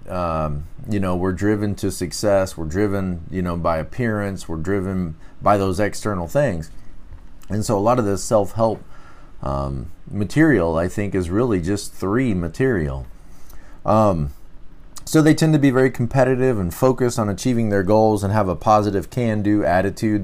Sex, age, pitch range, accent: male, 30-49, 90-115 Hz, American